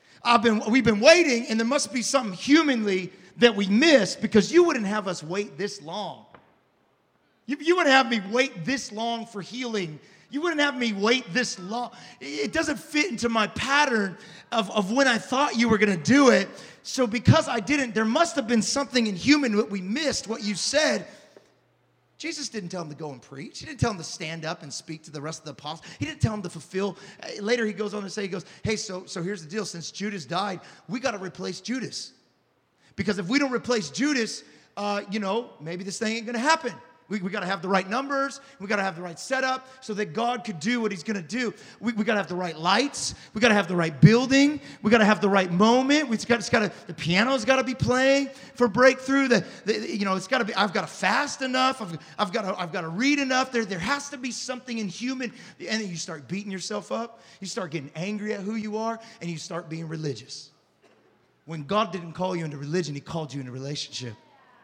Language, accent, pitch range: English, American, 185-250 Hz